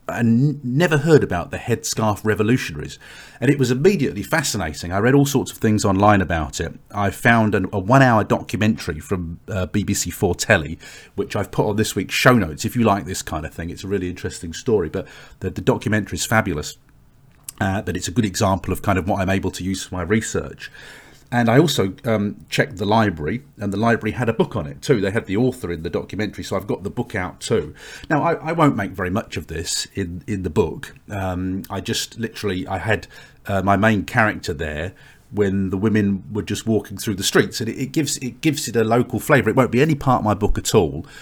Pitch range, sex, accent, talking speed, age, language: 95-115 Hz, male, British, 230 wpm, 40-59, English